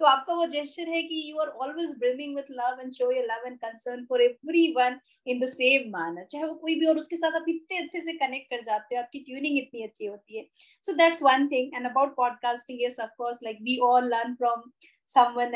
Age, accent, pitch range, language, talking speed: 20-39, Indian, 230-295 Hz, English, 135 wpm